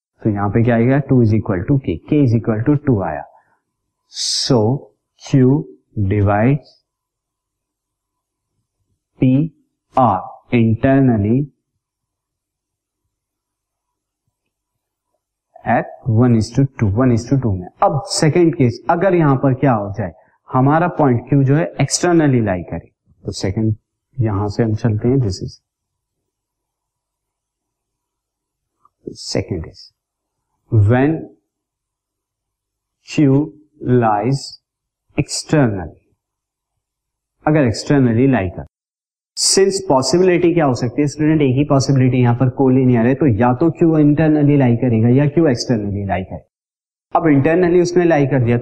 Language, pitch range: Hindi, 110-140 Hz